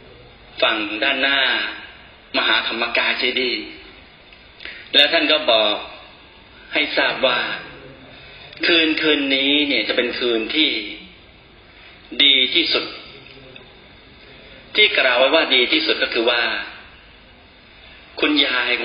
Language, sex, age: Thai, male, 30-49